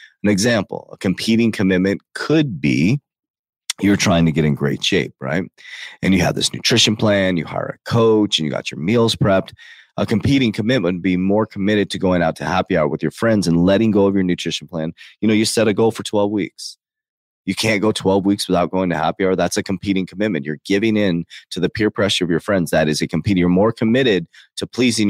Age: 30-49